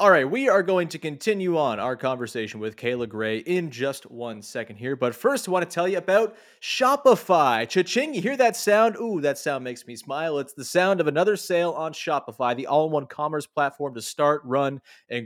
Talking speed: 210 wpm